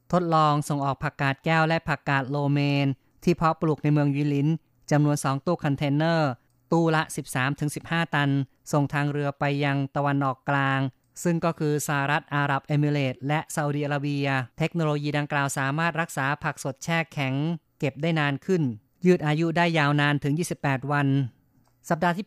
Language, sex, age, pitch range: Thai, female, 30-49, 135-155 Hz